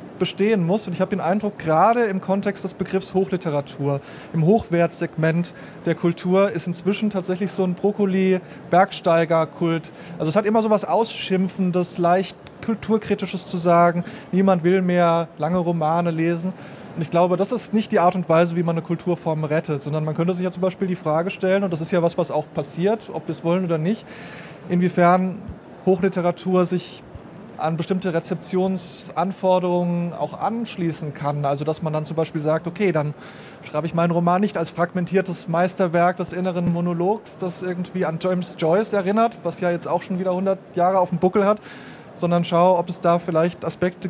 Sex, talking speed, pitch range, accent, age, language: male, 180 wpm, 165-190 Hz, German, 20-39, German